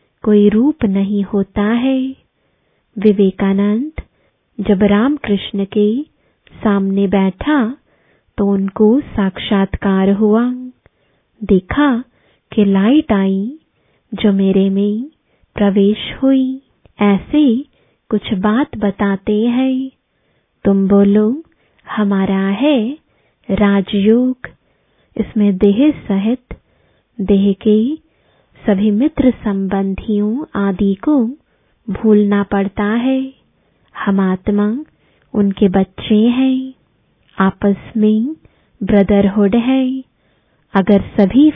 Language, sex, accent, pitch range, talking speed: English, female, Indian, 200-250 Hz, 85 wpm